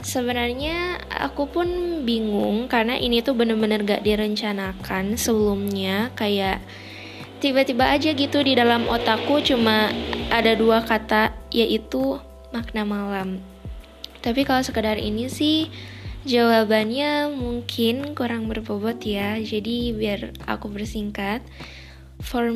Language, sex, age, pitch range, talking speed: Indonesian, female, 10-29, 210-245 Hz, 105 wpm